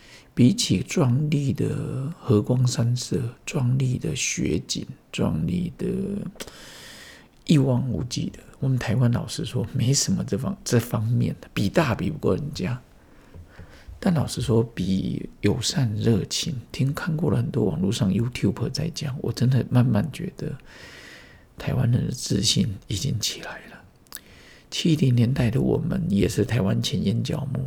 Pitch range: 115-150 Hz